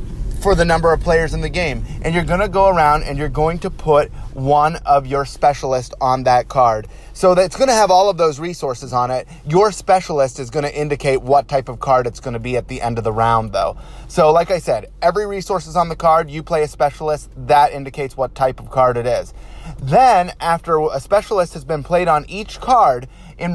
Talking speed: 230 wpm